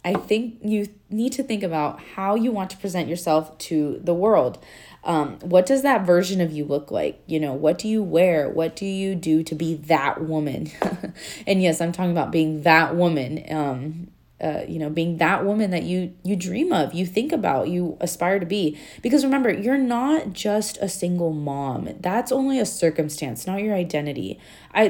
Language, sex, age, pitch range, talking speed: English, female, 20-39, 160-210 Hz, 200 wpm